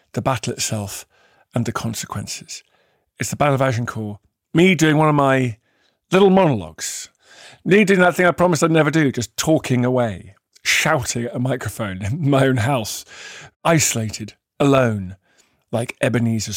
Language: English